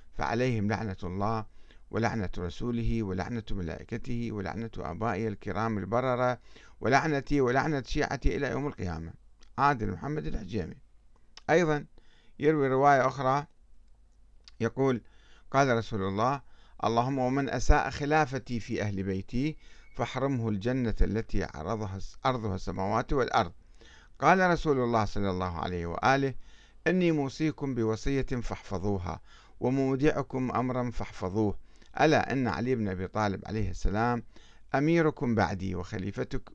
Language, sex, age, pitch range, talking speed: Arabic, male, 50-69, 100-130 Hz, 110 wpm